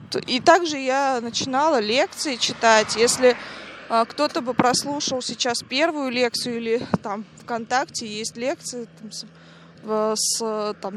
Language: Russian